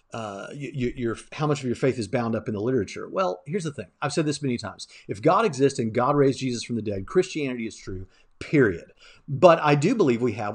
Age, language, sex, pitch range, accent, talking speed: 40-59, English, male, 115-160 Hz, American, 235 wpm